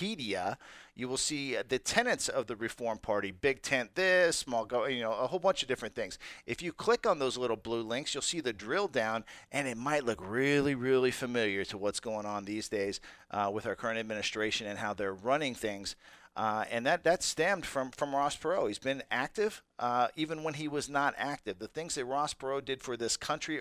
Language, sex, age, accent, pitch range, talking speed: English, male, 50-69, American, 115-145 Hz, 220 wpm